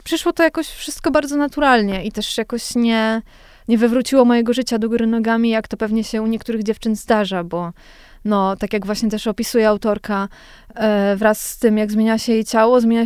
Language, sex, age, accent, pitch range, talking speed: Polish, female, 20-39, native, 215-240 Hz, 195 wpm